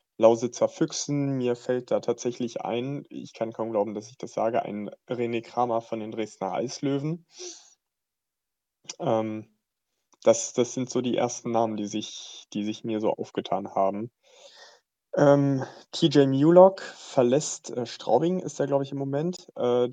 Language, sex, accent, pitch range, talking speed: German, male, German, 115-135 Hz, 155 wpm